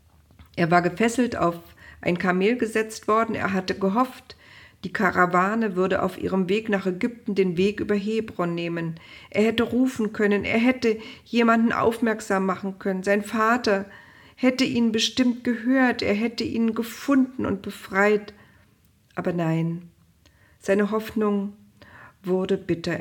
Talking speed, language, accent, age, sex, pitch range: 135 wpm, German, German, 50-69, female, 165-220 Hz